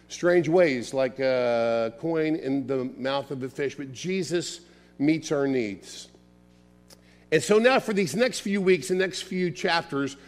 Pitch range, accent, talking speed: 140-185 Hz, American, 165 wpm